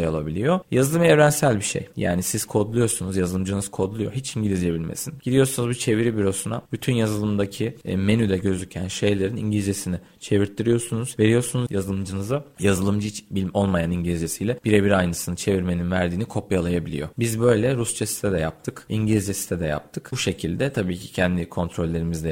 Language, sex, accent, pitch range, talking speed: Turkish, male, native, 85-110 Hz, 135 wpm